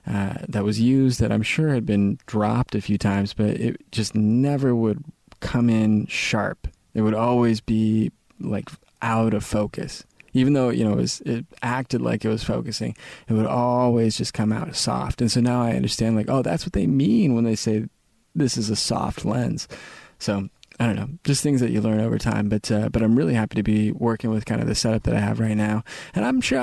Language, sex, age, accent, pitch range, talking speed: English, male, 20-39, American, 105-120 Hz, 225 wpm